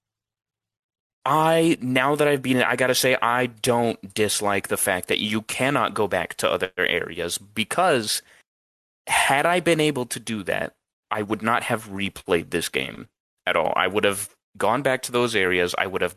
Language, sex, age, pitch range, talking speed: English, male, 20-39, 105-135 Hz, 190 wpm